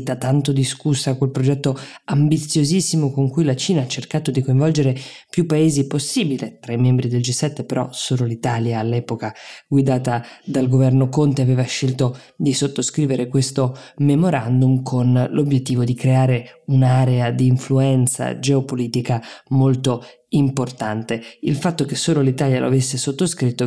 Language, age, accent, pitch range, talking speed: Italian, 20-39, native, 125-140 Hz, 135 wpm